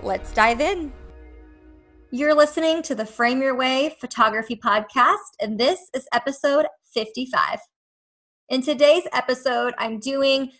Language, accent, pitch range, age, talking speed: English, American, 220-280 Hz, 20-39, 125 wpm